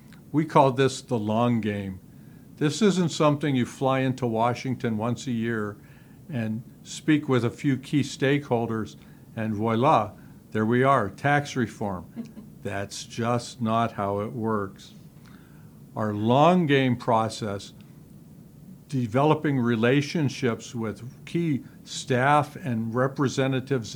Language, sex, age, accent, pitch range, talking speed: English, male, 50-69, American, 115-150 Hz, 120 wpm